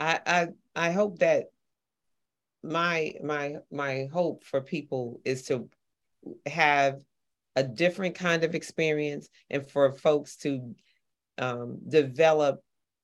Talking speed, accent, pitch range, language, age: 115 wpm, American, 135-160 Hz, English, 40-59